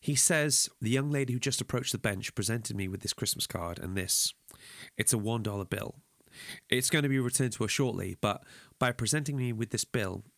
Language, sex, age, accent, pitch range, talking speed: English, male, 30-49, British, 105-135 Hz, 220 wpm